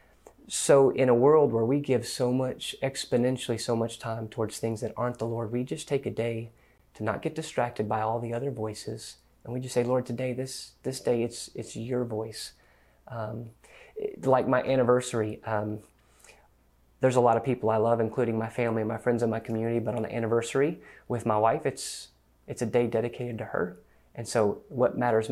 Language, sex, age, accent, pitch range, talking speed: English, male, 30-49, American, 110-130 Hz, 205 wpm